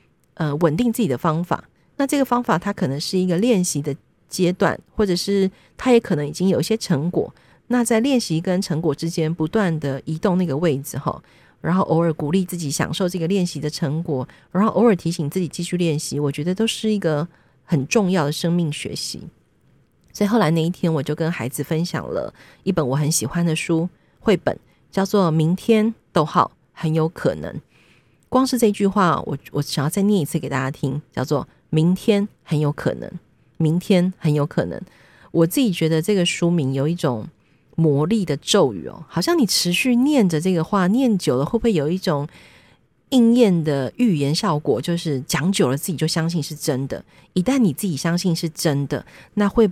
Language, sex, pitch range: Chinese, female, 155-195 Hz